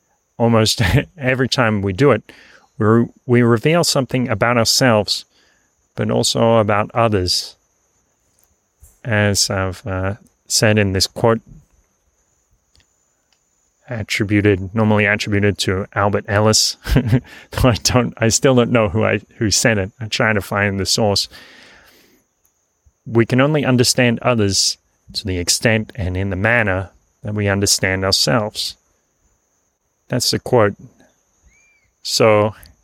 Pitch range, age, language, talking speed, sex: 95-120 Hz, 30-49, English, 120 wpm, male